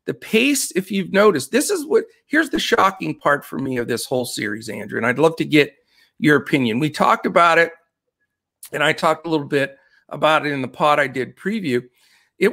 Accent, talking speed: American, 215 wpm